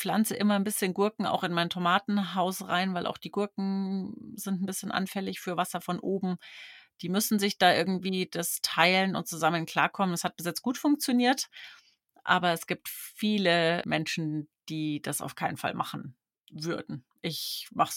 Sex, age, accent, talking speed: female, 30-49, German, 175 wpm